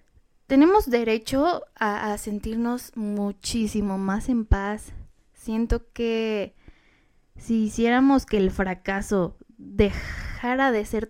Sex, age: female, 10-29